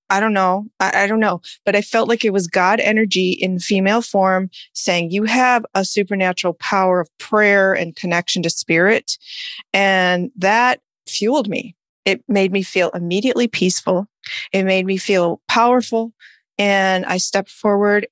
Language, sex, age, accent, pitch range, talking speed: English, female, 40-59, American, 180-225 Hz, 160 wpm